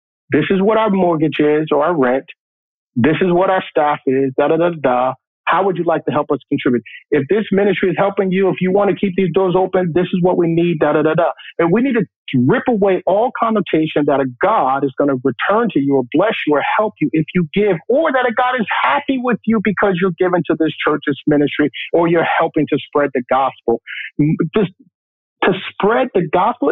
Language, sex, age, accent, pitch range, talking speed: English, male, 50-69, American, 150-195 Hz, 225 wpm